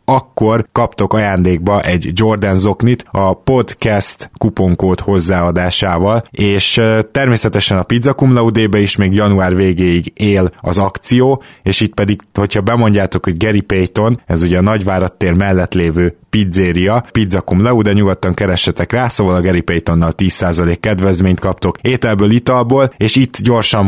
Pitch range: 95-110 Hz